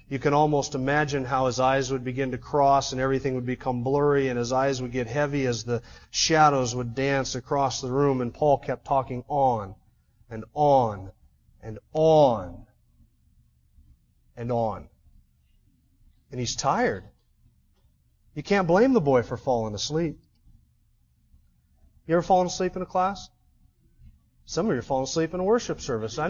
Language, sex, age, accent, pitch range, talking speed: English, male, 30-49, American, 130-170 Hz, 160 wpm